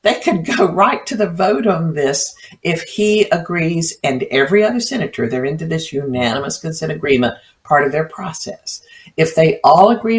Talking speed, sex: 175 wpm, female